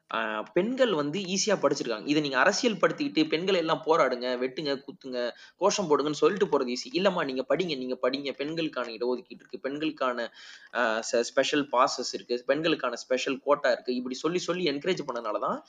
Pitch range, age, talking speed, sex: 135-210 Hz, 20-39, 125 wpm, male